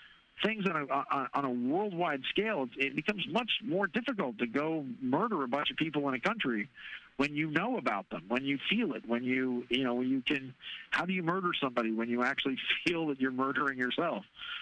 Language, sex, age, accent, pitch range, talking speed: English, male, 50-69, American, 125-150 Hz, 210 wpm